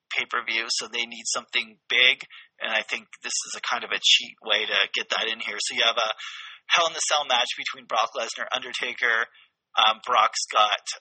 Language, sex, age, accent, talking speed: English, male, 30-49, American, 220 wpm